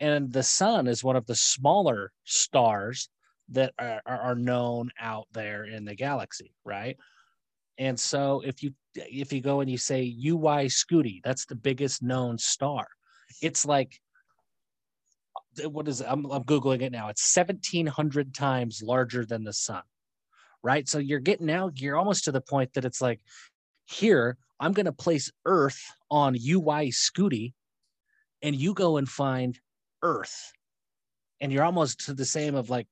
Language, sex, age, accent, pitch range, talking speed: English, male, 30-49, American, 120-150 Hz, 160 wpm